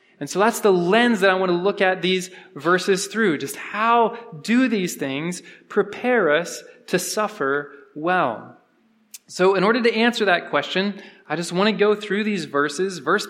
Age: 20-39